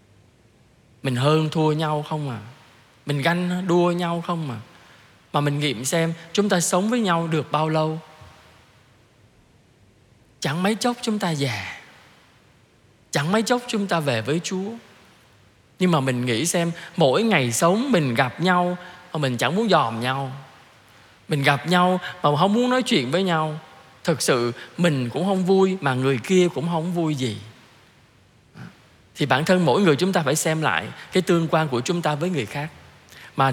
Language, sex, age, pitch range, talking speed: Vietnamese, male, 20-39, 130-180 Hz, 175 wpm